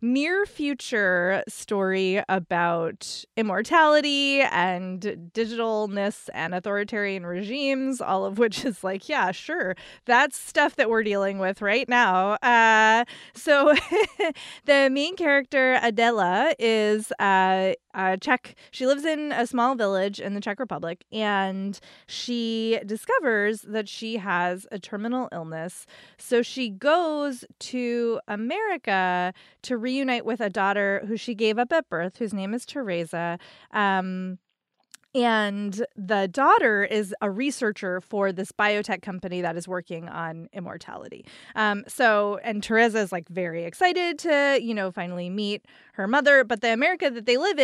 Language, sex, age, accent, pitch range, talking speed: English, female, 20-39, American, 190-250 Hz, 140 wpm